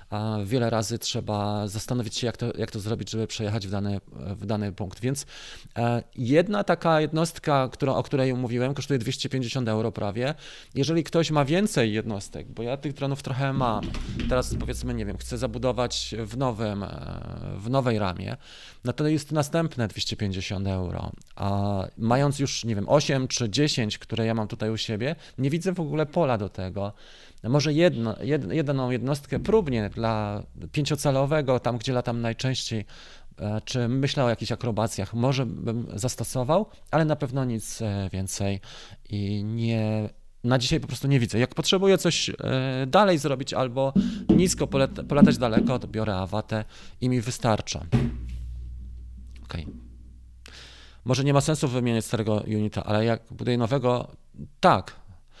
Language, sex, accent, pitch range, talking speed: Polish, male, native, 105-135 Hz, 150 wpm